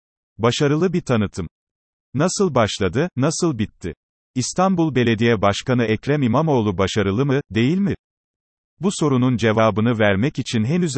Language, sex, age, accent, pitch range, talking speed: Turkish, male, 40-59, native, 105-145 Hz, 120 wpm